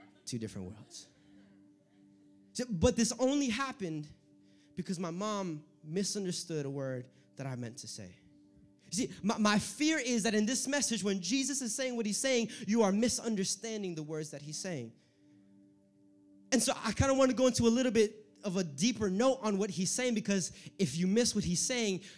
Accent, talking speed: American, 190 wpm